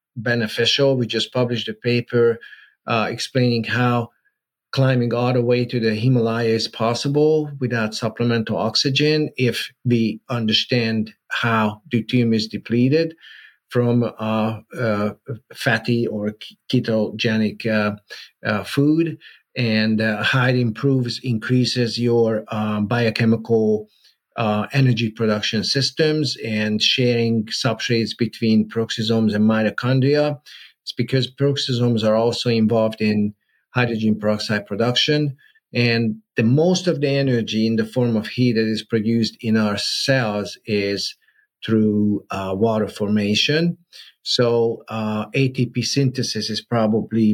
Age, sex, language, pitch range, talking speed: 50-69, male, English, 110-125 Hz, 120 wpm